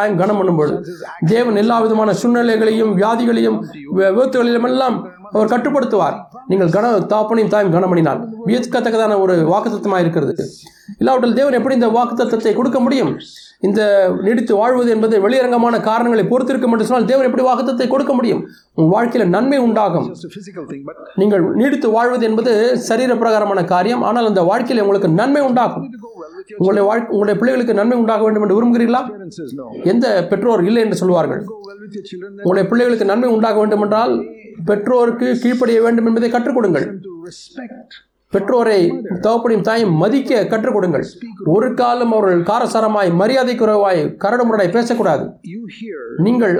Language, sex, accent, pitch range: Tamil, male, native, 200-240 Hz